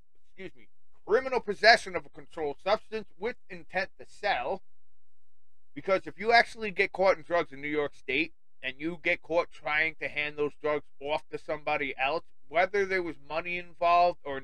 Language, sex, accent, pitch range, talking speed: English, male, American, 140-215 Hz, 180 wpm